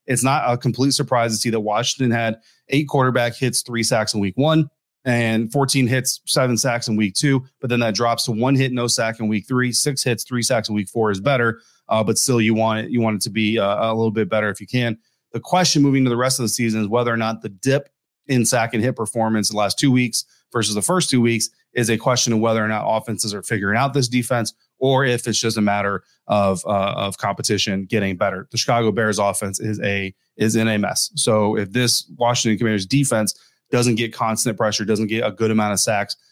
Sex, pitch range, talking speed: male, 105-125 Hz, 245 wpm